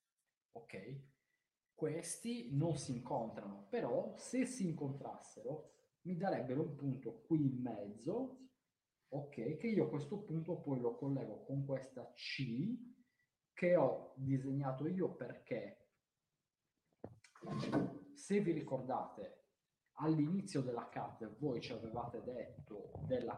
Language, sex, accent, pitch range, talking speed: Italian, male, native, 130-185 Hz, 110 wpm